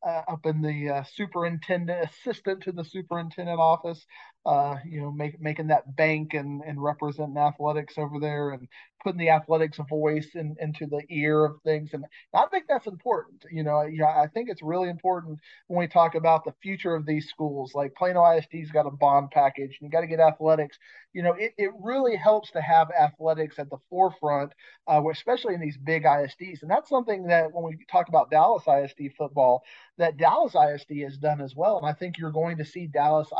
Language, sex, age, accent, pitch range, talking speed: English, male, 40-59, American, 150-170 Hz, 205 wpm